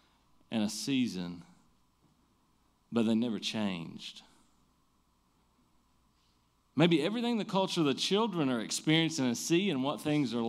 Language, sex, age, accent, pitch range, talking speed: English, male, 40-59, American, 120-160 Hz, 120 wpm